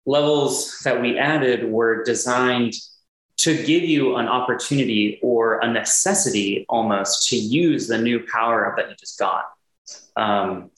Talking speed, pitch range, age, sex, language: 145 wpm, 110-130 Hz, 20-39, male, English